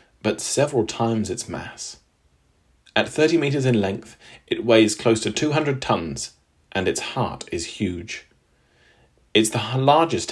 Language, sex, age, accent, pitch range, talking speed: English, male, 40-59, British, 95-120 Hz, 140 wpm